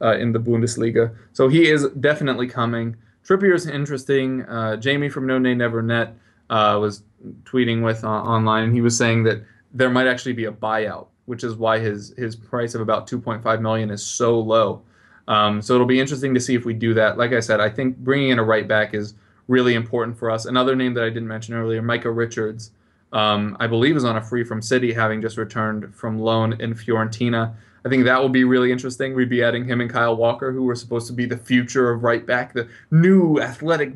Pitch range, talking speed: 110-125 Hz, 225 wpm